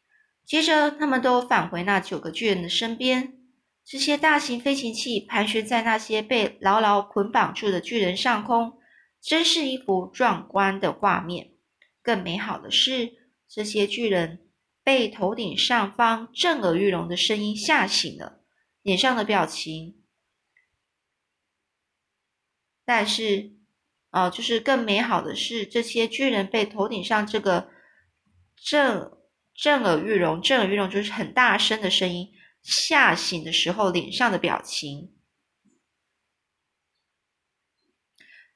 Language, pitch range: Chinese, 190-245 Hz